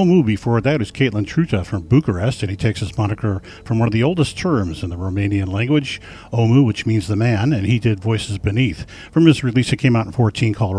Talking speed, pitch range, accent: 235 wpm, 100-130 Hz, American